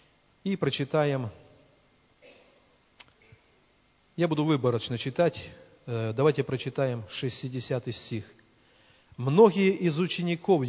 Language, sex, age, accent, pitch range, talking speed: Russian, male, 40-59, native, 125-170 Hz, 75 wpm